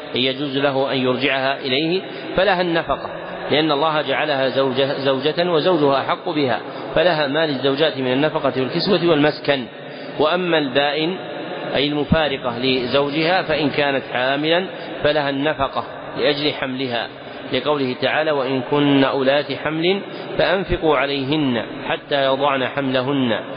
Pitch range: 135-155 Hz